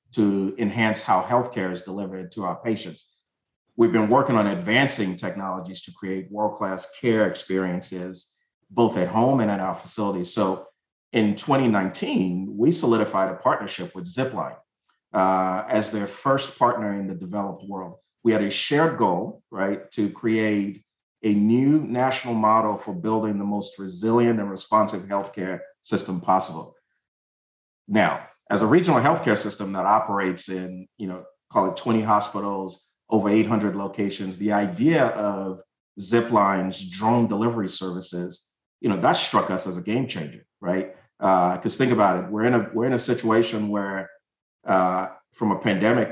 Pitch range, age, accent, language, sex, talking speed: 95-110 Hz, 40-59, American, English, male, 155 wpm